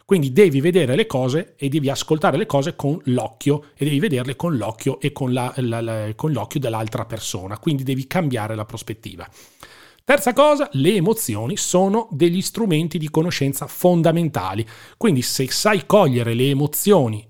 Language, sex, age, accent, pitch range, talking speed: Italian, male, 40-59, native, 125-175 Hz, 165 wpm